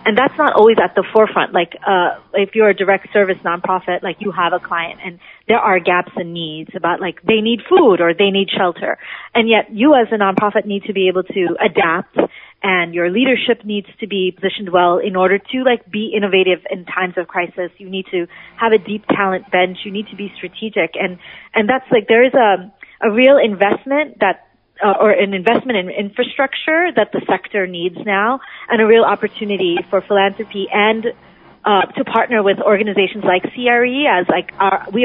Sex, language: female, English